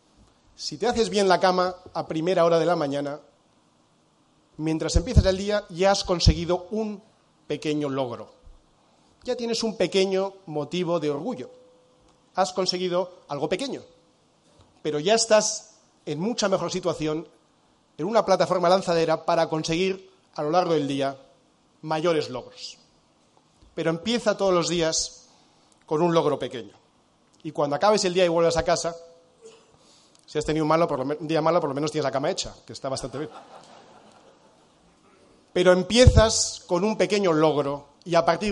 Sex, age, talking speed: male, 40-59, 150 wpm